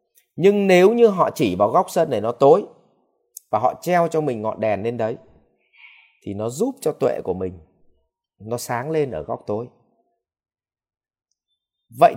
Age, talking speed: 30-49, 170 wpm